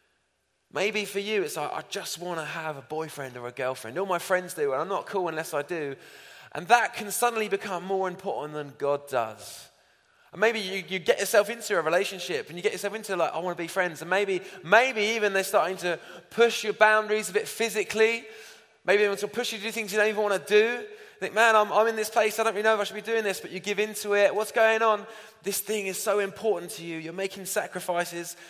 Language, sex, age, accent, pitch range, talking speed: English, male, 20-39, British, 175-225 Hz, 250 wpm